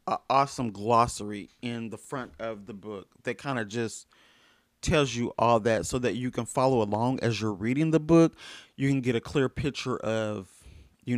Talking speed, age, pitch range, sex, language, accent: 195 wpm, 30-49, 115-160 Hz, male, English, American